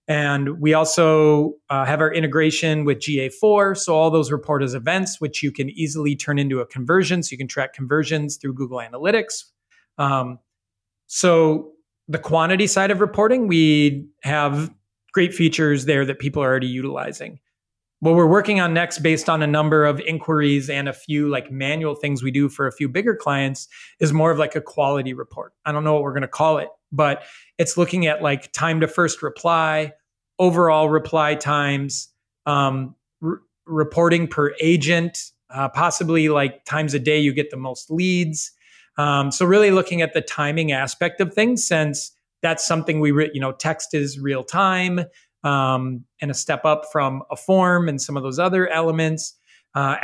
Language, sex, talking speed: English, male, 180 wpm